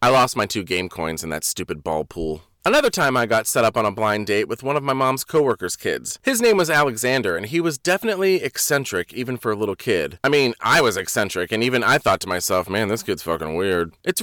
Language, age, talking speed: English, 30-49, 250 wpm